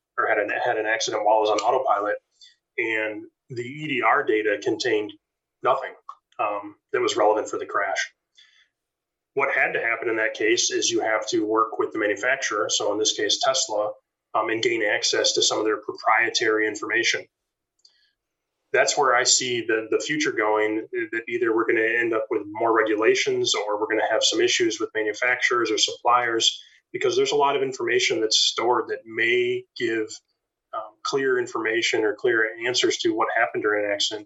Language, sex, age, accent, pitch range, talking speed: English, male, 20-39, American, 335-415 Hz, 185 wpm